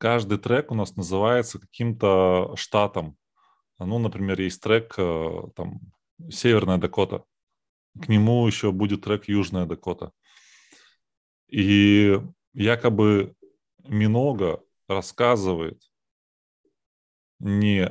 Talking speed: 85 wpm